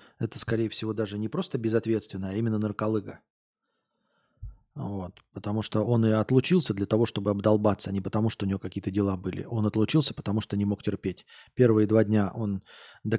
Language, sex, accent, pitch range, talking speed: Russian, male, native, 105-145 Hz, 180 wpm